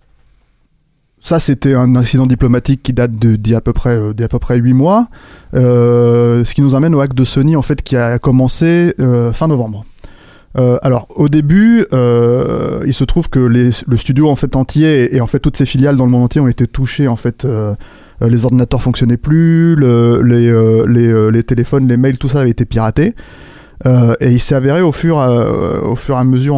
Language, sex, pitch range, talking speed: French, male, 115-140 Hz, 210 wpm